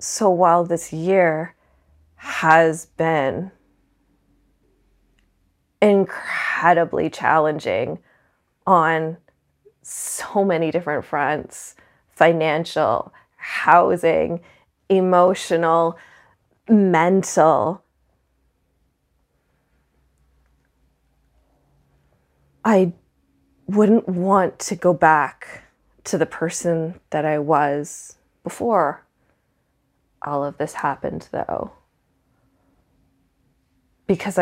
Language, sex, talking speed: English, female, 65 wpm